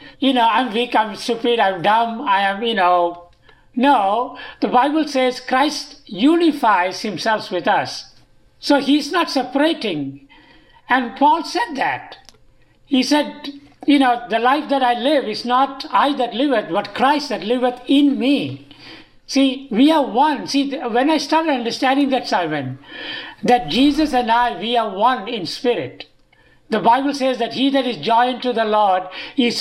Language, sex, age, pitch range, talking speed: English, male, 60-79, 225-280 Hz, 165 wpm